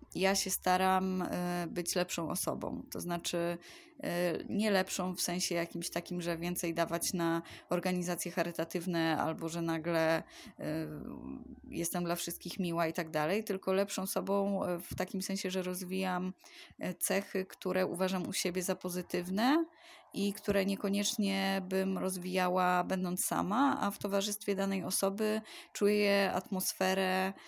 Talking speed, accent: 130 wpm, native